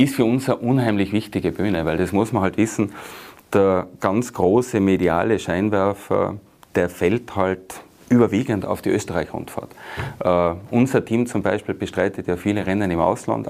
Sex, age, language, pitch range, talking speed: male, 30-49, German, 95-110 Hz, 160 wpm